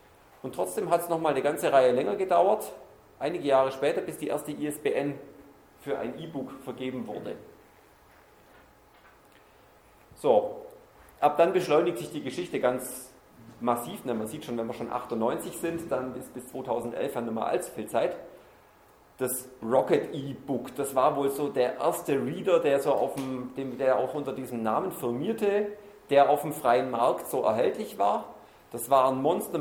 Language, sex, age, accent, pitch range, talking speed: German, male, 40-59, German, 125-170 Hz, 160 wpm